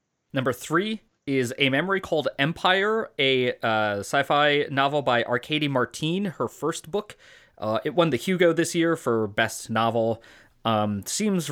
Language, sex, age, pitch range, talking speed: English, male, 20-39, 115-170 Hz, 150 wpm